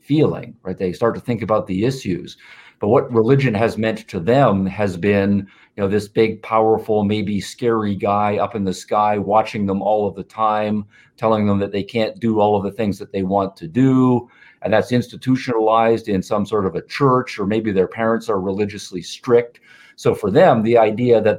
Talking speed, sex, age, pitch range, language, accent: 205 wpm, male, 50-69, 100-120 Hz, English, American